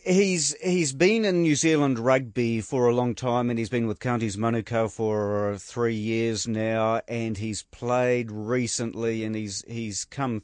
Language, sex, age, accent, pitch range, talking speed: English, male, 40-59, Australian, 110-130 Hz, 165 wpm